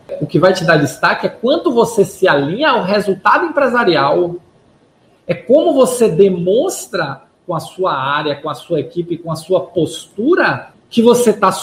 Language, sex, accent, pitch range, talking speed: Portuguese, male, Brazilian, 150-210 Hz, 170 wpm